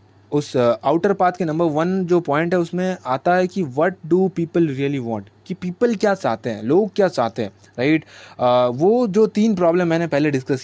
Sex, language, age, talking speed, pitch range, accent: male, Hindi, 20-39, 200 wpm, 130-170 Hz, native